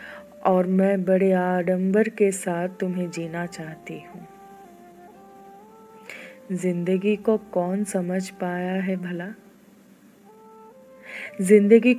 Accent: native